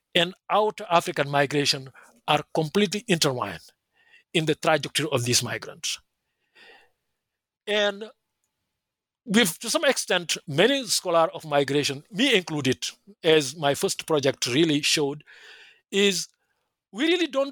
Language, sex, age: English, male, 50-69